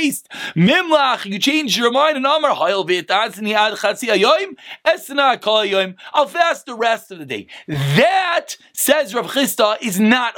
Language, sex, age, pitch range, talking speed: English, male, 30-49, 220-290 Hz, 110 wpm